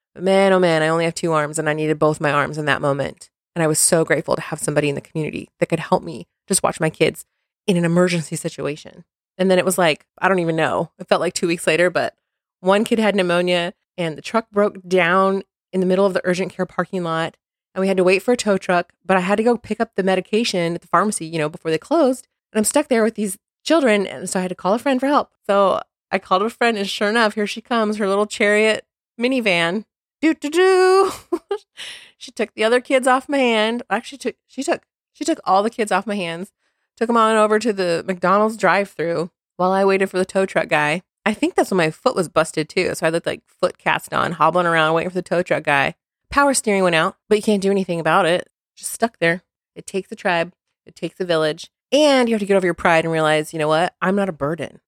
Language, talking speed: English, 255 wpm